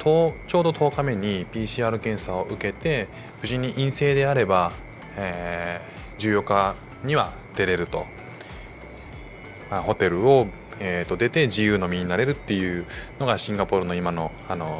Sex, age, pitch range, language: male, 20-39, 95-120 Hz, Japanese